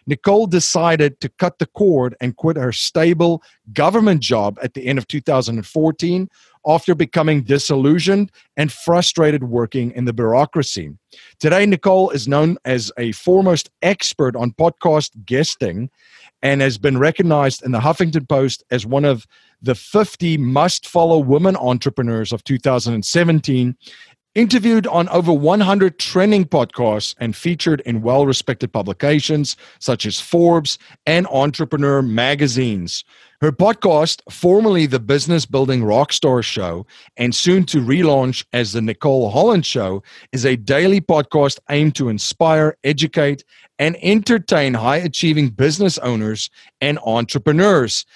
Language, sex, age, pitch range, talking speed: English, male, 40-59, 125-170 Hz, 130 wpm